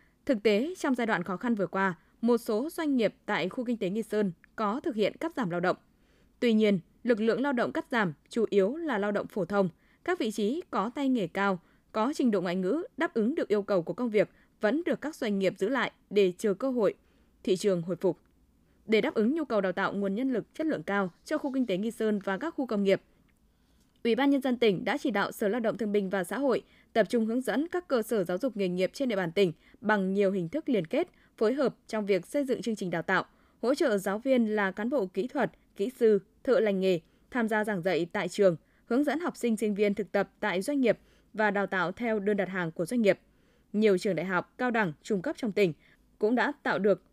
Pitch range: 195-255 Hz